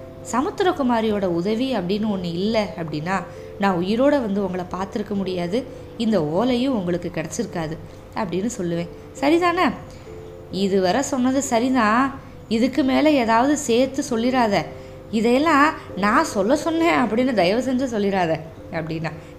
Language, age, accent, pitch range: Tamil, 20-39, native, 185-265 Hz